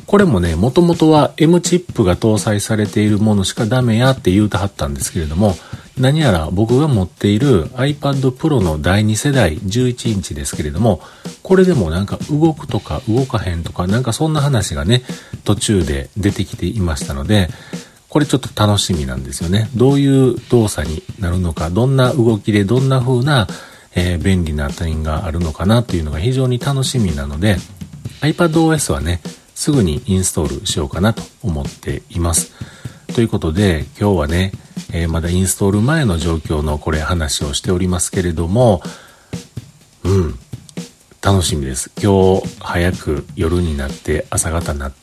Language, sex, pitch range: Japanese, male, 85-125 Hz